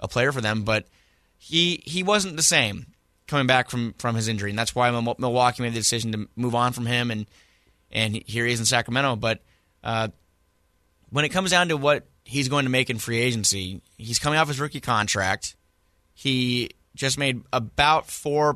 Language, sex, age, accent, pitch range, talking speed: English, male, 20-39, American, 95-130 Hz, 195 wpm